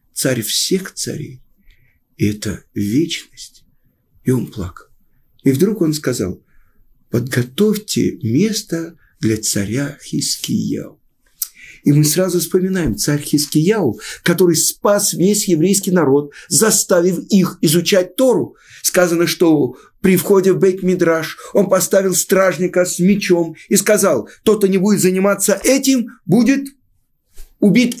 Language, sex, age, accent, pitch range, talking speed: Russian, male, 50-69, native, 145-210 Hz, 115 wpm